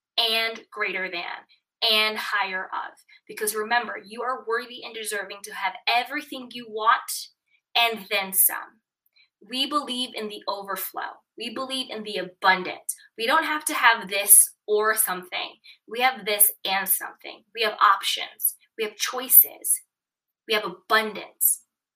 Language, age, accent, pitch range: English, 20-39, American, 205-280 Hz